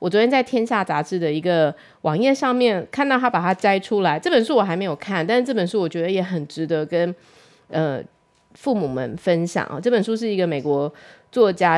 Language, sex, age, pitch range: Chinese, female, 30-49, 165-225 Hz